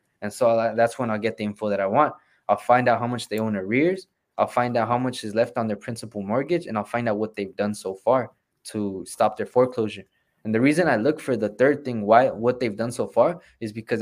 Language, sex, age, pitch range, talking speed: English, male, 20-39, 115-150 Hz, 260 wpm